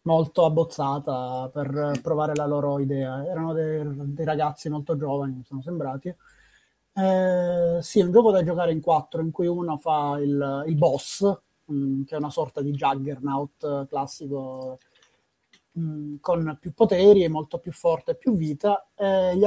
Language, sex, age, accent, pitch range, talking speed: Italian, male, 30-49, native, 145-175 Hz, 165 wpm